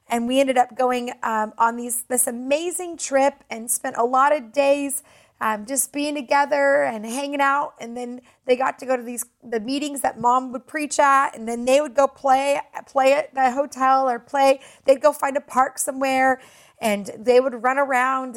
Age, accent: 30-49, American